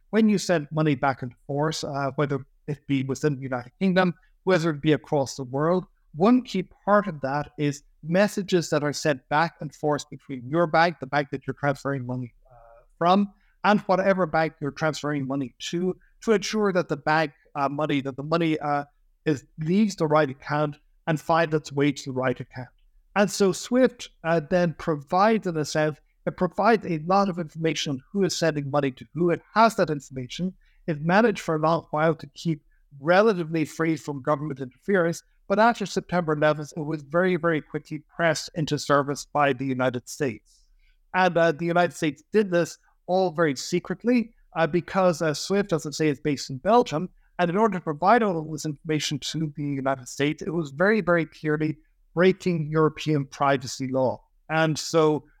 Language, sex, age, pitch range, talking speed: English, male, 60-79, 145-180 Hz, 190 wpm